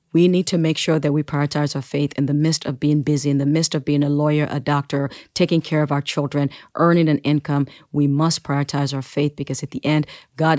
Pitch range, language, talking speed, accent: 145-160 Hz, English, 245 wpm, American